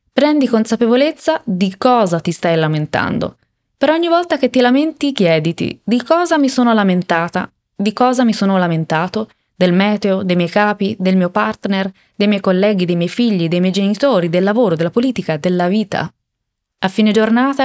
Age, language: 20-39, Italian